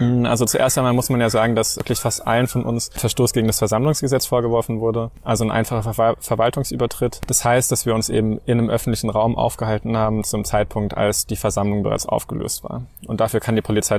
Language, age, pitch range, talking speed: German, 20-39, 105-120 Hz, 205 wpm